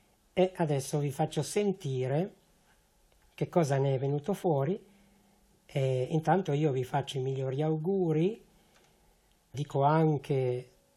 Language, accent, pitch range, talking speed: Italian, native, 135-170 Hz, 115 wpm